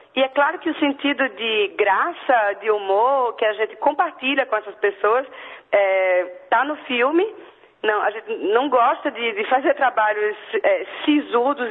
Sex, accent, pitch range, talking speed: female, Brazilian, 215-305 Hz, 160 wpm